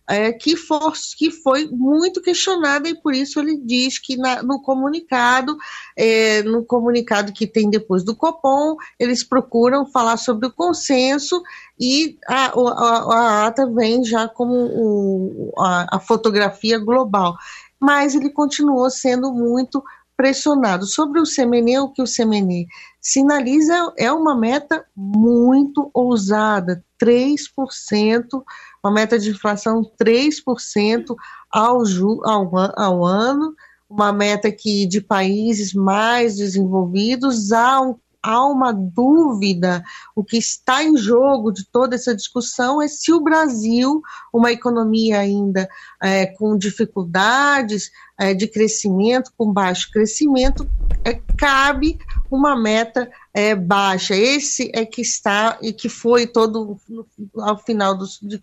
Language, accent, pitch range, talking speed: Portuguese, Brazilian, 215-275 Hz, 120 wpm